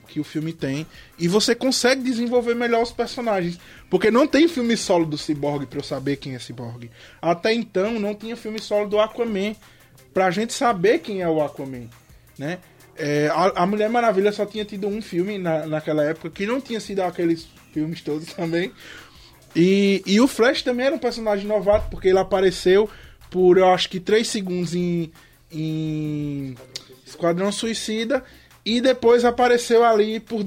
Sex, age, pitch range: male, 20-39, 155-215 Hz